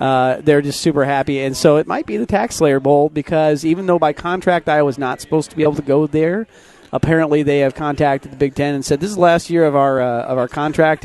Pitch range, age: 140-175 Hz, 40-59